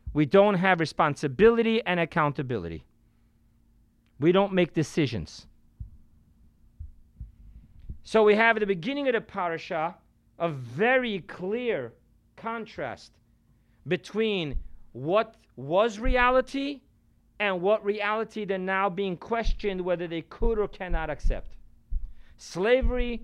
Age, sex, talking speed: 40-59, male, 105 wpm